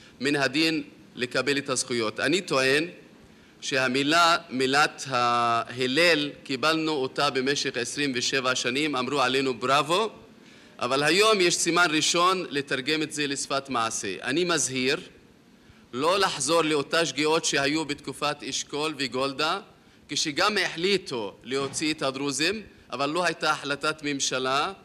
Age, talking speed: 30-49, 120 wpm